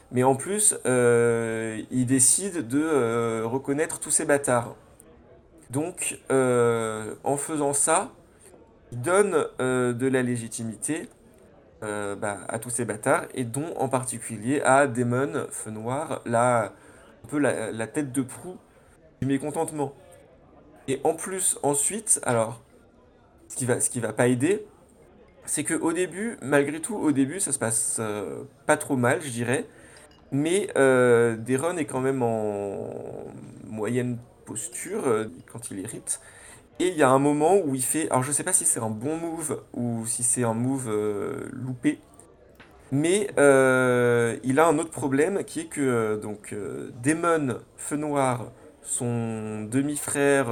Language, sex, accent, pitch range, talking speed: French, male, French, 115-145 Hz, 160 wpm